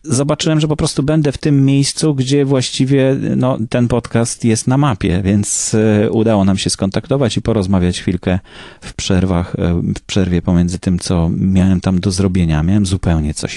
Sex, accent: male, native